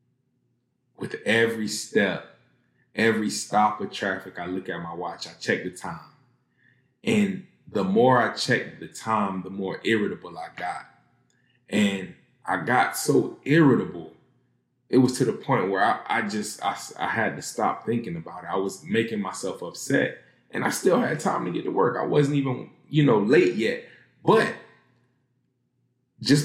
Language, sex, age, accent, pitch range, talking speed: English, male, 20-39, American, 95-125 Hz, 165 wpm